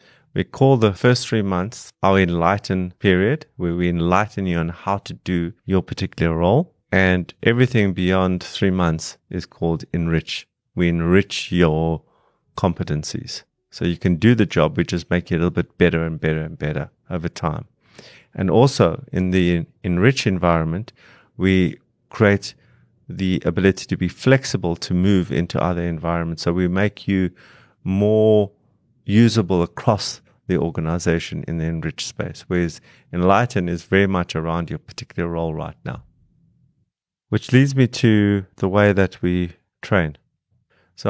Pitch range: 85-110 Hz